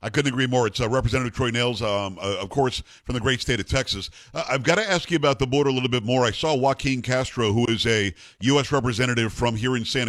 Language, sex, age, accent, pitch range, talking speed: English, male, 50-69, American, 115-145 Hz, 270 wpm